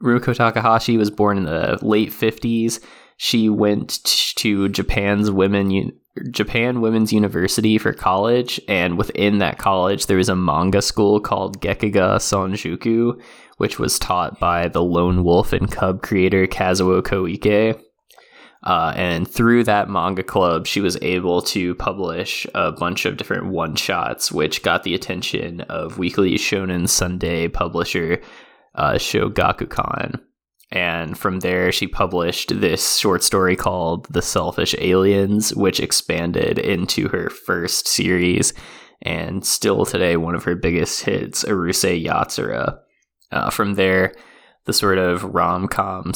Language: English